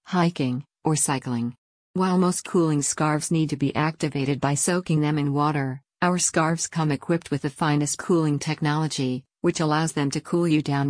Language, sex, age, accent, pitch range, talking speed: English, female, 50-69, American, 145-165 Hz, 175 wpm